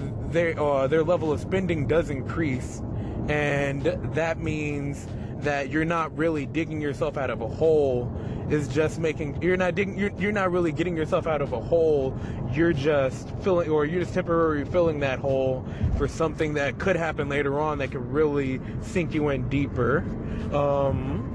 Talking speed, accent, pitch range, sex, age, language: 170 wpm, American, 125-155 Hz, male, 20-39, English